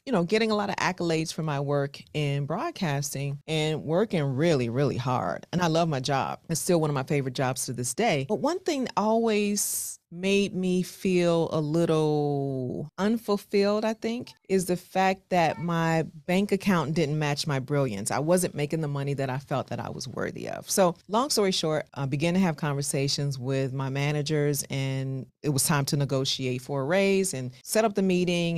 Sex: female